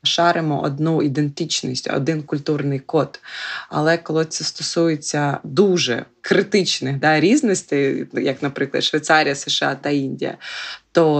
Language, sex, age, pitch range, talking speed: Ukrainian, female, 20-39, 145-175 Hz, 115 wpm